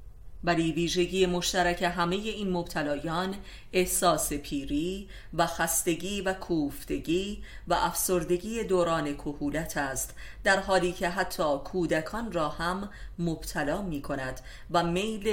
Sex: female